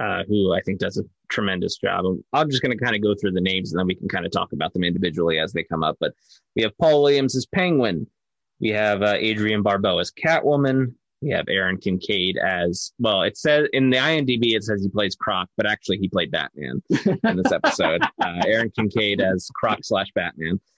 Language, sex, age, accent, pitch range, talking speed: English, male, 20-39, American, 95-115 Hz, 225 wpm